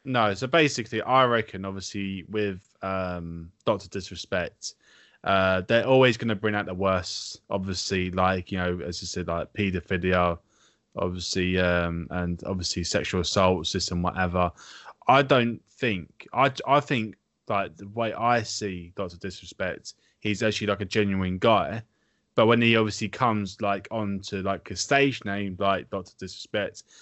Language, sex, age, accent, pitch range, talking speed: English, male, 20-39, British, 95-110 Hz, 155 wpm